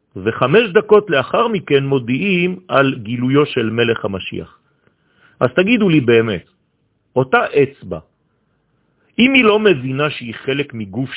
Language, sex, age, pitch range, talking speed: French, male, 50-69, 115-195 Hz, 125 wpm